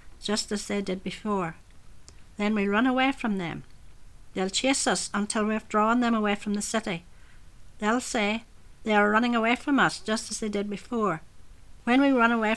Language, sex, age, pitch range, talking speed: English, female, 60-79, 180-225 Hz, 185 wpm